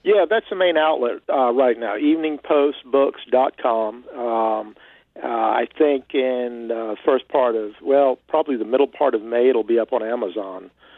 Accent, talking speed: American, 170 wpm